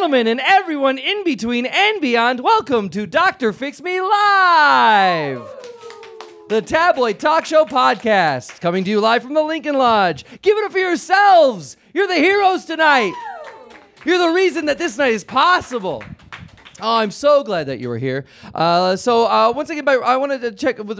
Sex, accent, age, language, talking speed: male, American, 20-39, English, 180 wpm